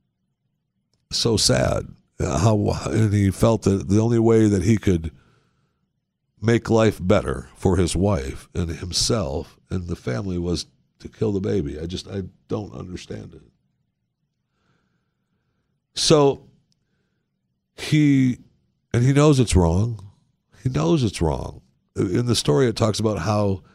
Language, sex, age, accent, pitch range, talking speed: English, male, 60-79, American, 85-115 Hz, 135 wpm